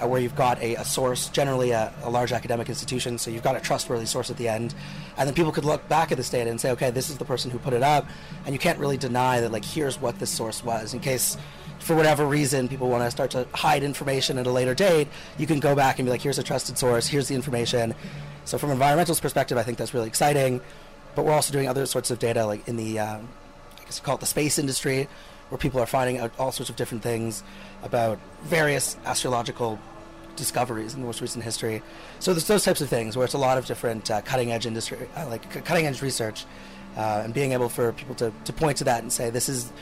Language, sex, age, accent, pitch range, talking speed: English, male, 30-49, American, 115-140 Hz, 250 wpm